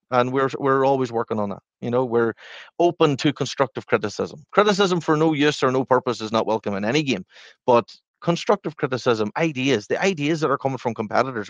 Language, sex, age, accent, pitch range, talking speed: English, male, 30-49, Irish, 110-135 Hz, 200 wpm